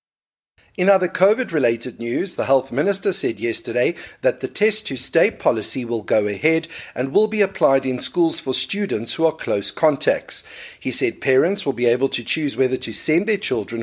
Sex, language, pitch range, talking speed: male, English, 125-180 Hz, 180 wpm